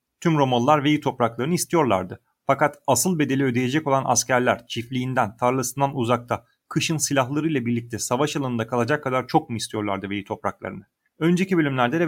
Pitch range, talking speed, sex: 120-155 Hz, 145 wpm, male